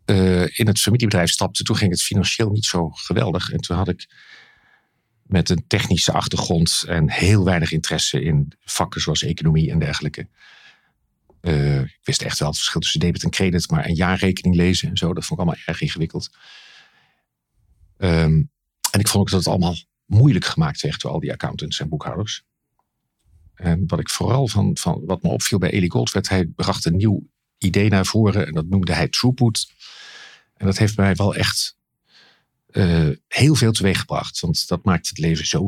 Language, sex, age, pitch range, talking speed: Dutch, male, 50-69, 85-105 Hz, 185 wpm